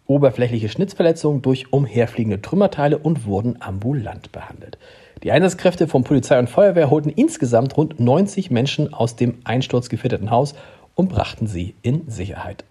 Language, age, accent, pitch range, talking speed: German, 40-59, German, 115-150 Hz, 135 wpm